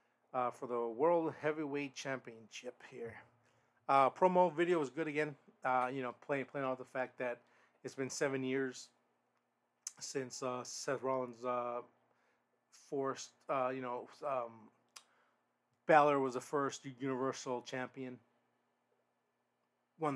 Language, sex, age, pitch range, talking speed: English, male, 30-49, 120-135 Hz, 130 wpm